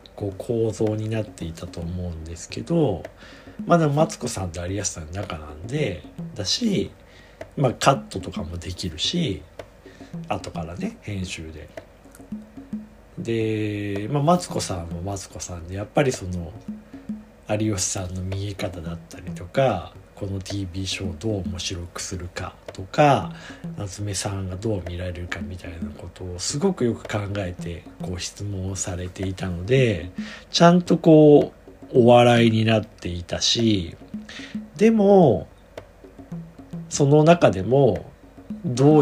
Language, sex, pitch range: Japanese, male, 90-135 Hz